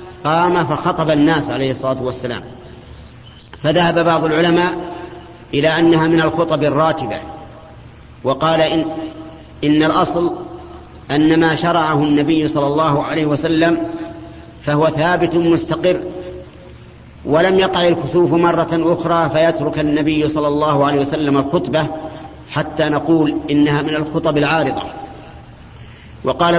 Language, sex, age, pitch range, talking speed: Arabic, male, 40-59, 150-170 Hz, 110 wpm